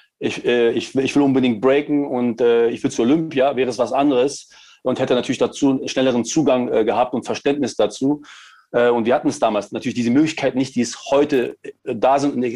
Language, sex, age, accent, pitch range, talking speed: German, male, 40-59, German, 125-150 Hz, 185 wpm